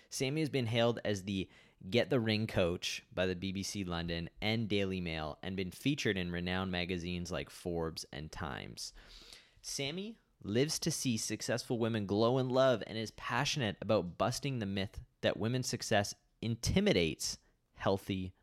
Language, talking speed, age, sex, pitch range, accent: English, 155 wpm, 20-39, male, 90-115 Hz, American